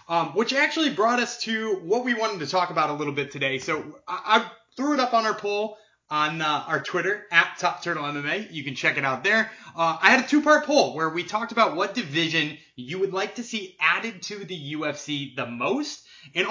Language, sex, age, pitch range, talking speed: English, male, 20-39, 150-215 Hz, 230 wpm